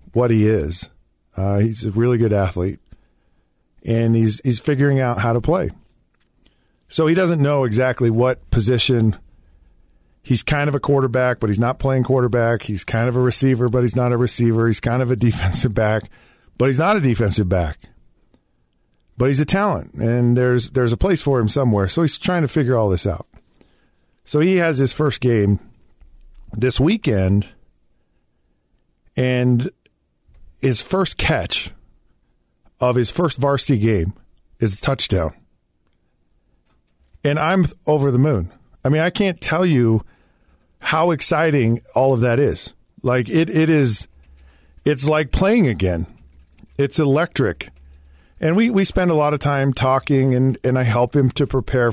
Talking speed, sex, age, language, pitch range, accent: 160 wpm, male, 50-69, English, 80-135 Hz, American